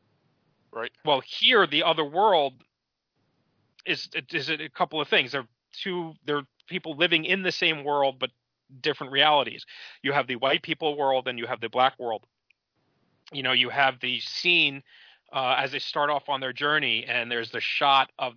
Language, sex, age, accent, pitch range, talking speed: English, male, 30-49, American, 125-155 Hz, 185 wpm